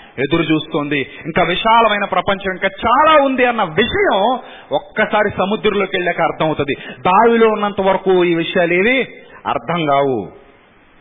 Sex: male